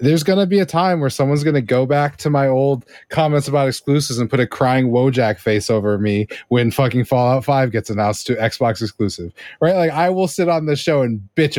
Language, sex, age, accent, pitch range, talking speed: English, male, 30-49, American, 115-145 Hz, 235 wpm